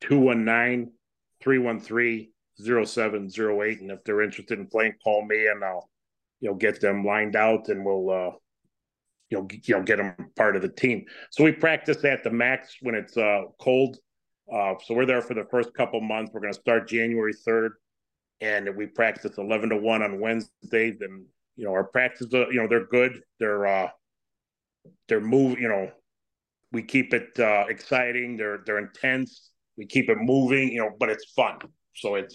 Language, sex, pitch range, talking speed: English, male, 100-120 Hz, 180 wpm